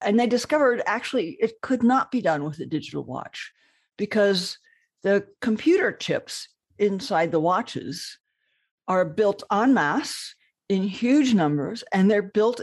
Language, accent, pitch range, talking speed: English, American, 165-220 Hz, 145 wpm